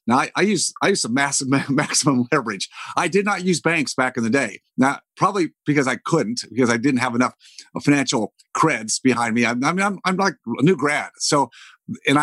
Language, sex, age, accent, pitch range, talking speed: English, male, 50-69, American, 125-155 Hz, 210 wpm